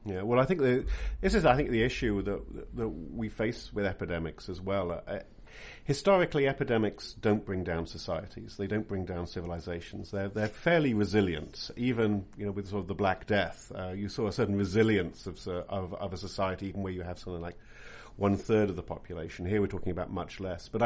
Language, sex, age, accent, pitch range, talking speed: English, male, 50-69, British, 95-120 Hz, 210 wpm